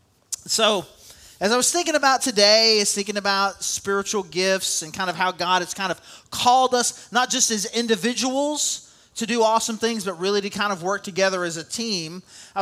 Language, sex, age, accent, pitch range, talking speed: English, male, 30-49, American, 190-230 Hz, 195 wpm